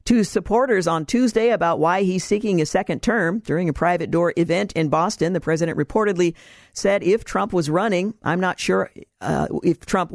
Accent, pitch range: American, 160-195 Hz